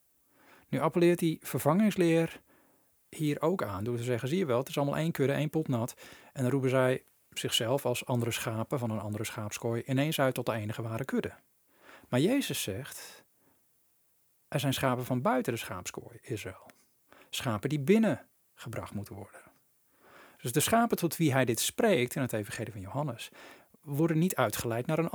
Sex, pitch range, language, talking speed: male, 120-155 Hz, Dutch, 180 wpm